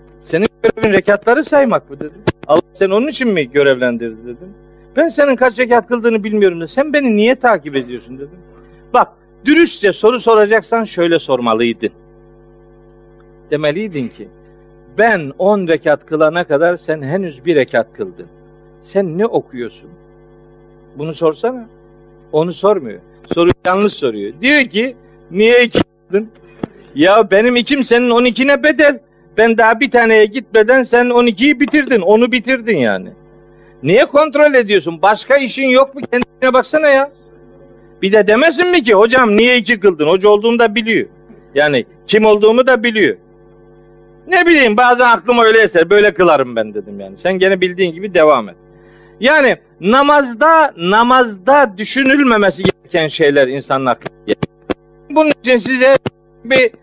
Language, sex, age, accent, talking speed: Turkish, male, 50-69, native, 140 wpm